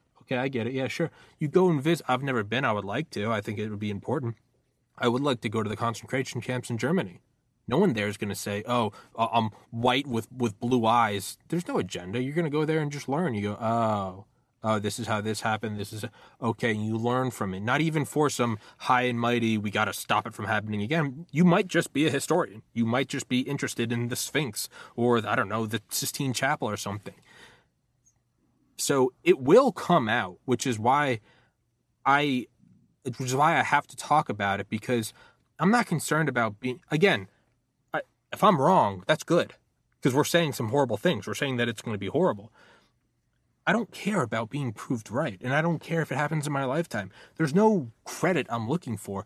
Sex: male